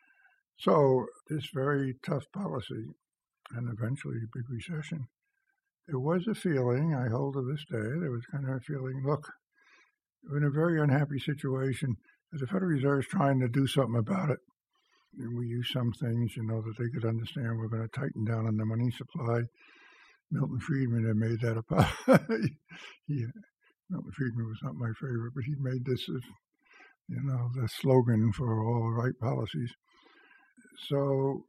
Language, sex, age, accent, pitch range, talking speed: English, male, 60-79, American, 115-155 Hz, 170 wpm